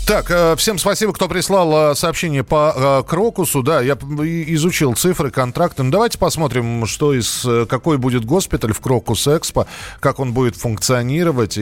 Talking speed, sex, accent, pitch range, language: 125 wpm, male, native, 115-160 Hz, Russian